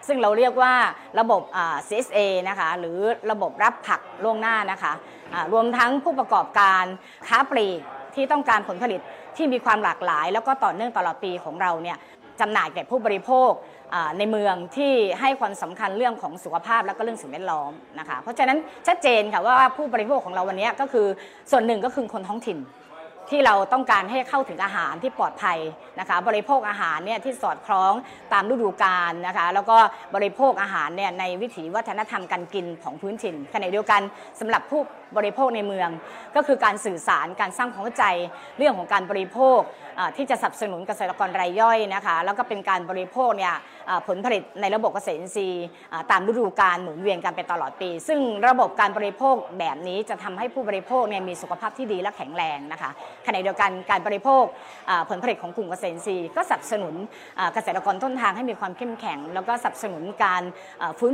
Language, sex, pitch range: Thai, female, 190-250 Hz